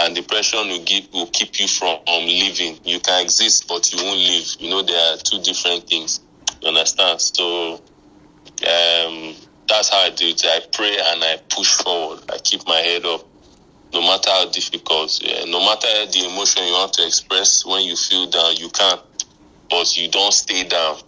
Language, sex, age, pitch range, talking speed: English, male, 20-39, 80-90 Hz, 195 wpm